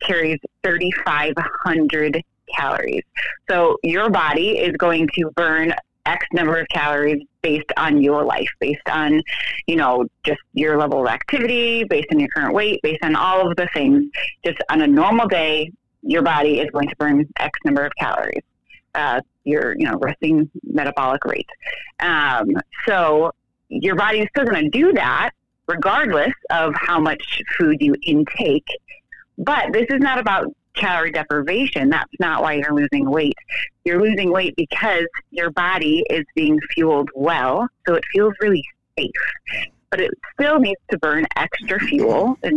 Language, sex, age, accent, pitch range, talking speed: English, female, 30-49, American, 155-235 Hz, 160 wpm